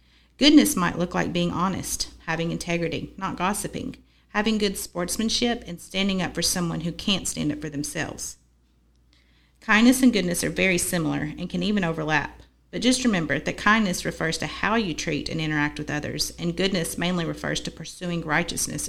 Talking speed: 175 wpm